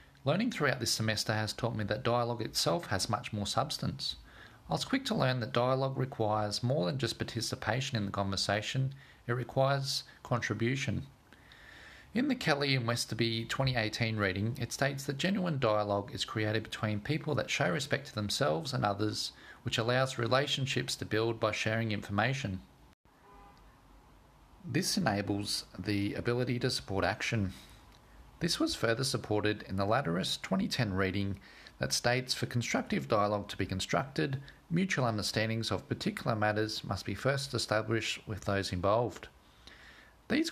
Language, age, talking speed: English, 40-59, 150 wpm